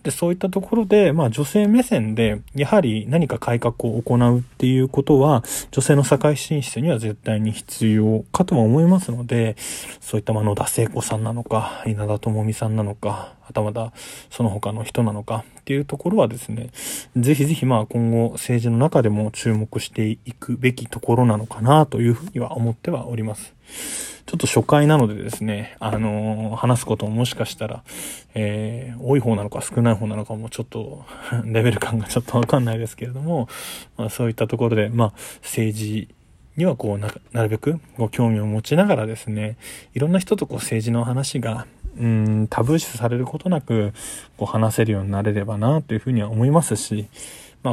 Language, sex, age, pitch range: Japanese, male, 20-39, 110-135 Hz